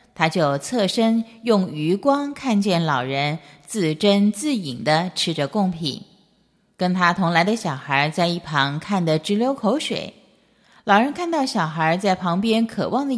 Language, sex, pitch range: Chinese, female, 155-215 Hz